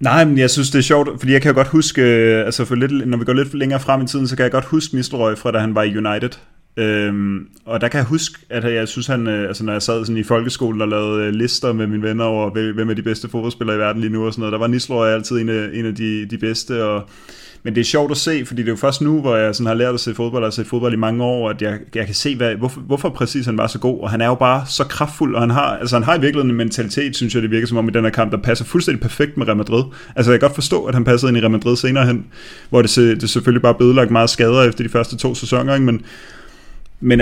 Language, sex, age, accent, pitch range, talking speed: Danish, male, 30-49, native, 115-135 Hz, 300 wpm